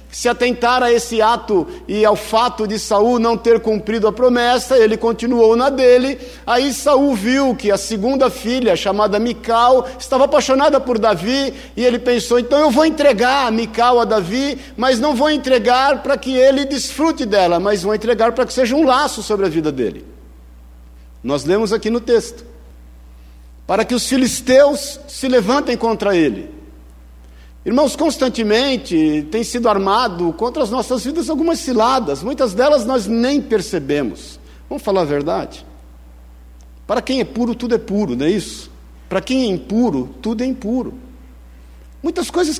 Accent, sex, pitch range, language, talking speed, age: Brazilian, male, 180-255 Hz, Portuguese, 160 wpm, 50-69